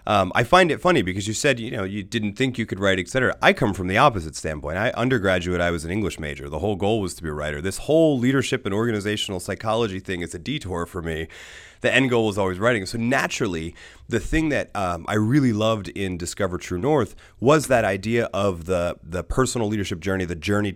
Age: 30-49